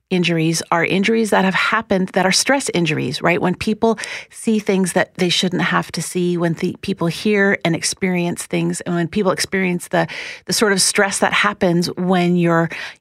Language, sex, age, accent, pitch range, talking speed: English, female, 40-59, American, 160-185 Hz, 190 wpm